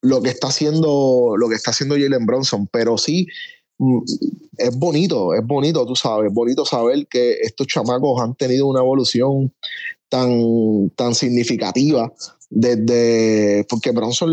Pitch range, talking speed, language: 120-150 Hz, 140 wpm, Spanish